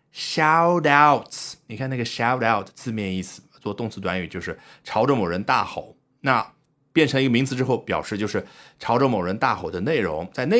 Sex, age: male, 30-49